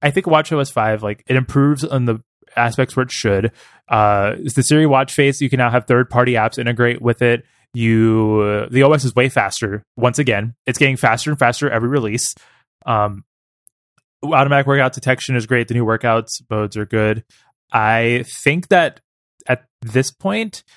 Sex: male